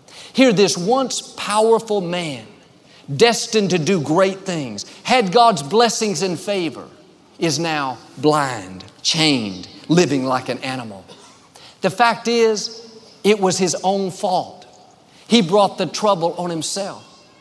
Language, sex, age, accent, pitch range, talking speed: English, male, 50-69, American, 150-205 Hz, 130 wpm